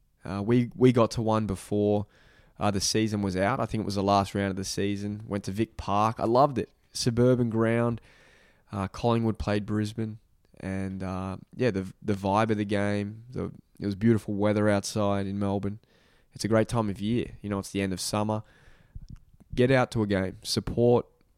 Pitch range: 95-115 Hz